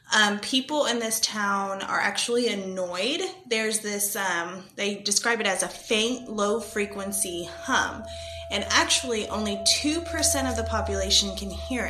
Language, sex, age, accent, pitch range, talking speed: English, female, 20-39, American, 195-235 Hz, 140 wpm